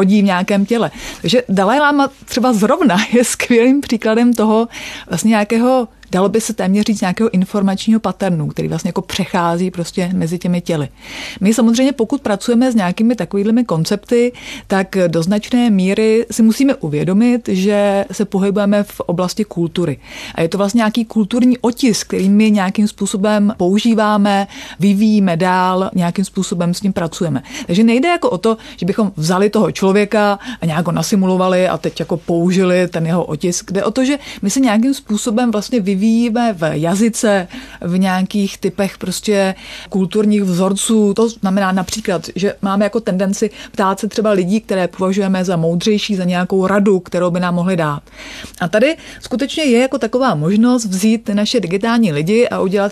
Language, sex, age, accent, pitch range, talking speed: Czech, female, 30-49, native, 185-225 Hz, 165 wpm